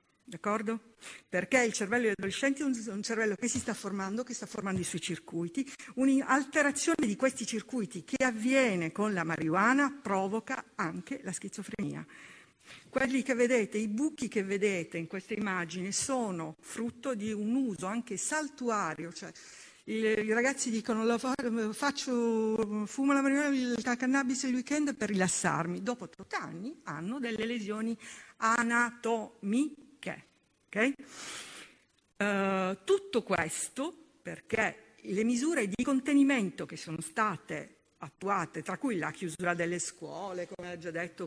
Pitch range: 180-245 Hz